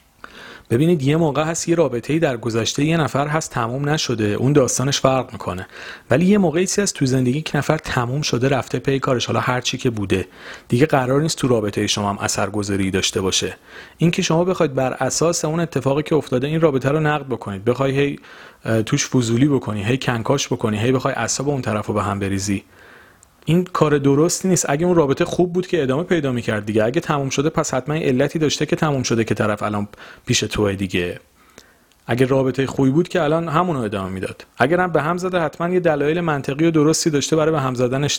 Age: 40-59